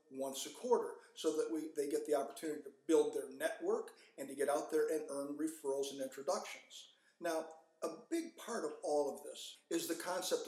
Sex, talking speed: male, 200 wpm